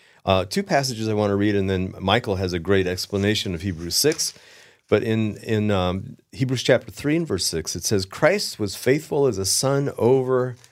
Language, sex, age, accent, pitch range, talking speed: English, male, 50-69, American, 100-140 Hz, 200 wpm